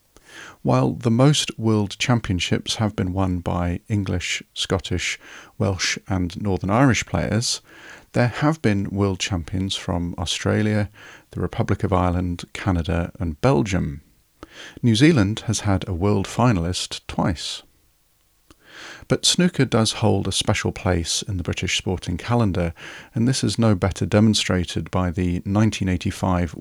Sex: male